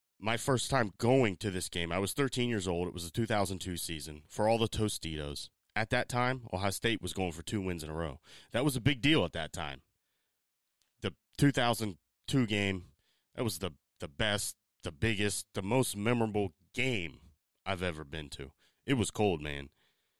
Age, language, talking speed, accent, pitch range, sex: 30-49, English, 190 wpm, American, 90-115 Hz, male